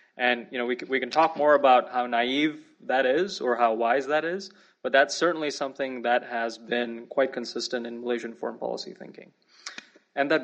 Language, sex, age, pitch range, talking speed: English, male, 20-39, 120-145 Hz, 190 wpm